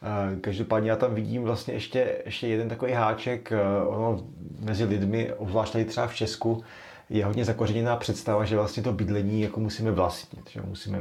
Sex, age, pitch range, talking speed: male, 30-49, 105-115 Hz, 165 wpm